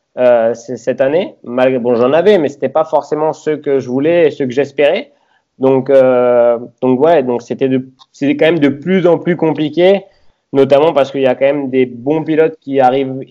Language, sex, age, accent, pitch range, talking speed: French, male, 20-39, French, 120-150 Hz, 210 wpm